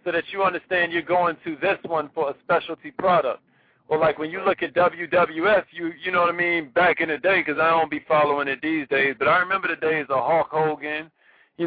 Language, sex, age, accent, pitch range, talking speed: English, male, 40-59, American, 165-205 Hz, 240 wpm